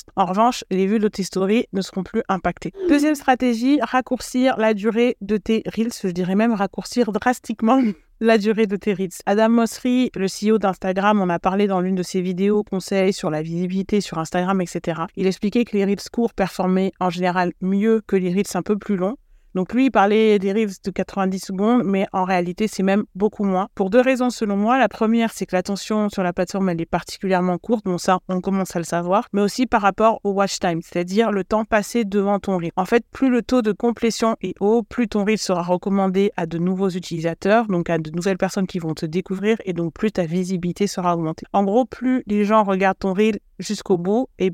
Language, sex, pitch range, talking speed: French, female, 185-225 Hz, 220 wpm